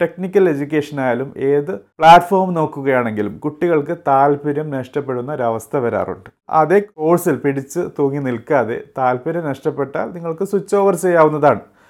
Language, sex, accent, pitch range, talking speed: Malayalam, male, native, 130-165 Hz, 110 wpm